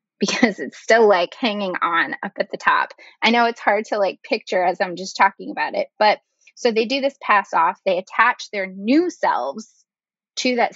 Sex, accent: female, American